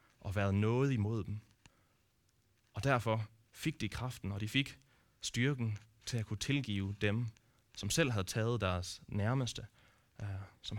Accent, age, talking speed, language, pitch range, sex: native, 30-49, 145 wpm, Danish, 100-120 Hz, male